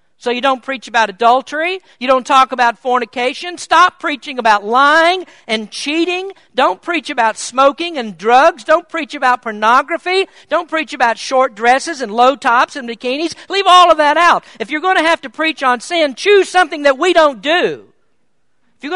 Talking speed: 185 wpm